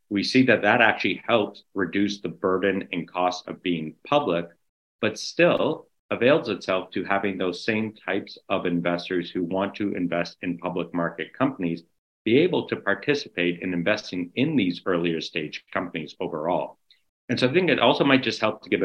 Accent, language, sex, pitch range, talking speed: American, English, male, 85-105 Hz, 180 wpm